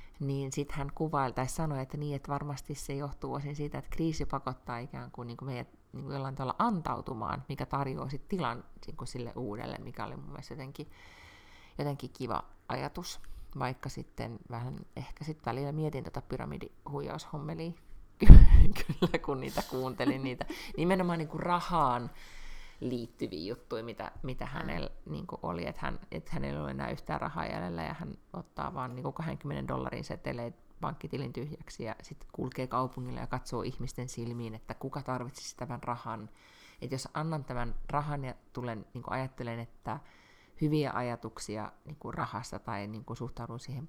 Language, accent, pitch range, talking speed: Finnish, native, 115-145 Hz, 160 wpm